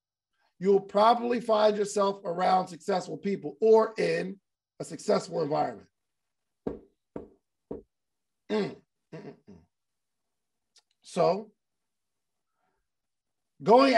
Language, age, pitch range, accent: English, 40-59, 175-225 Hz, American